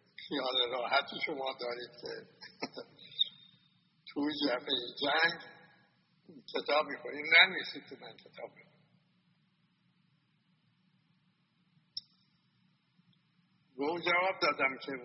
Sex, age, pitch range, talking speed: male, 60-79, 160-185 Hz, 75 wpm